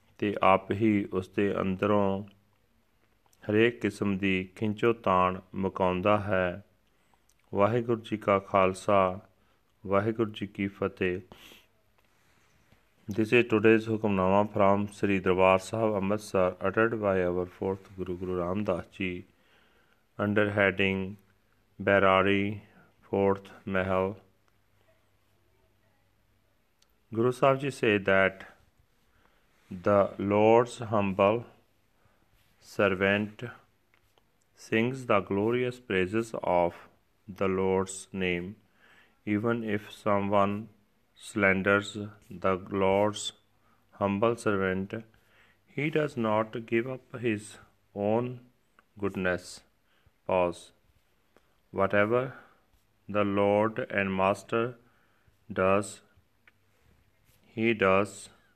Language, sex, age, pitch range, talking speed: Punjabi, male, 40-59, 95-110 Hz, 90 wpm